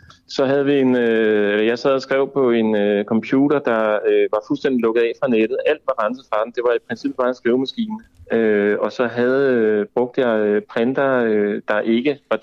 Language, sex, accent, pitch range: Danish, male, native, 110-135 Hz